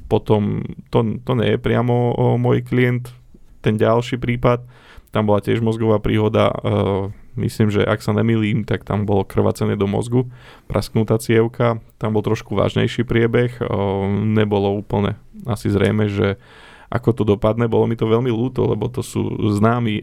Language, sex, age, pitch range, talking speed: Slovak, male, 20-39, 105-115 Hz, 160 wpm